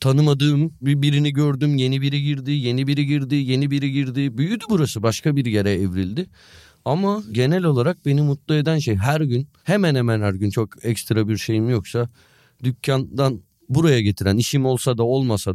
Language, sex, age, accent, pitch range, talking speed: Turkish, male, 40-59, native, 115-150 Hz, 165 wpm